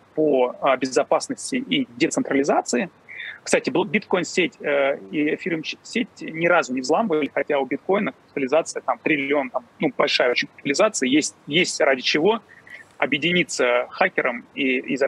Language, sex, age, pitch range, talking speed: Russian, male, 30-49, 140-200 Hz, 130 wpm